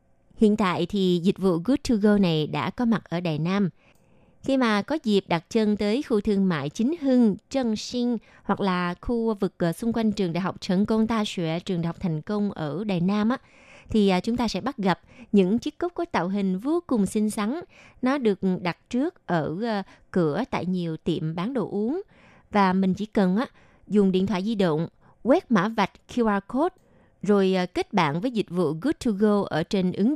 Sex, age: female, 20-39